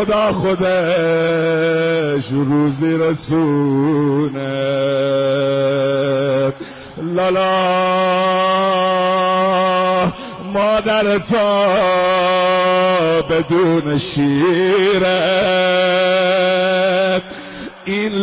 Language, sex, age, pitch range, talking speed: Persian, male, 50-69, 160-185 Hz, 35 wpm